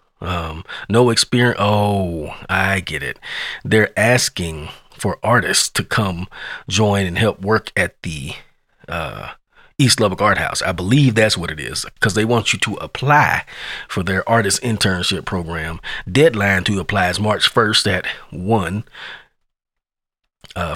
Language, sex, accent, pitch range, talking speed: English, male, American, 95-130 Hz, 145 wpm